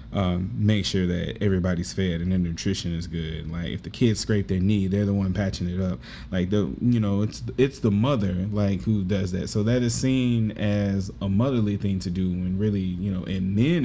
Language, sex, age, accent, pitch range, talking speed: English, male, 20-39, American, 95-110 Hz, 220 wpm